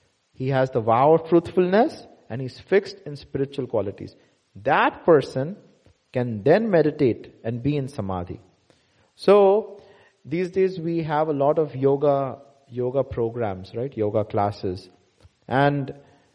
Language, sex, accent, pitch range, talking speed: English, male, Indian, 115-180 Hz, 130 wpm